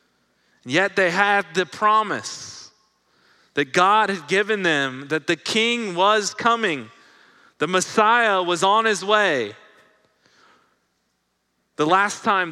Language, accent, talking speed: English, American, 115 wpm